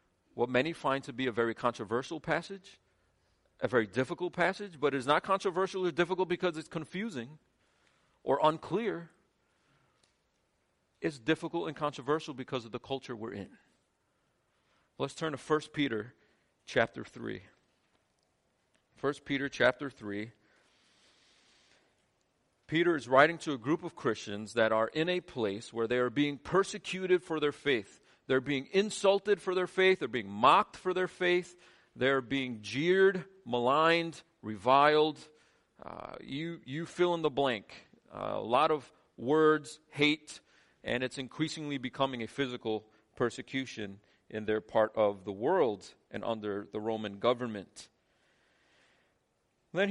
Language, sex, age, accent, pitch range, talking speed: English, male, 40-59, American, 120-175 Hz, 140 wpm